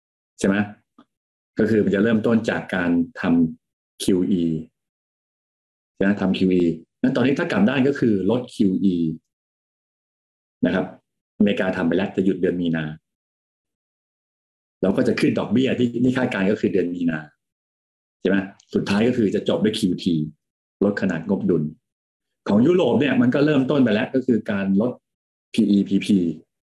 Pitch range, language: 80-115 Hz, Thai